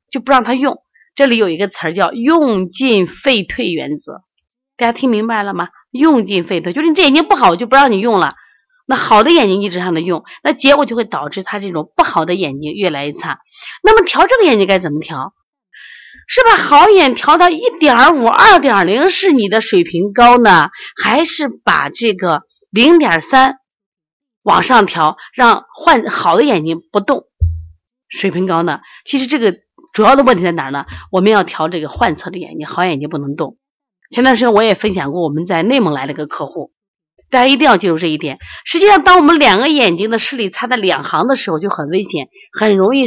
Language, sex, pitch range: Chinese, female, 175-275 Hz